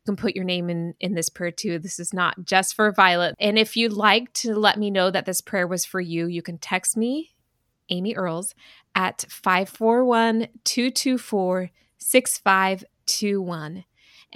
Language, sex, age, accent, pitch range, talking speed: English, female, 20-39, American, 180-210 Hz, 160 wpm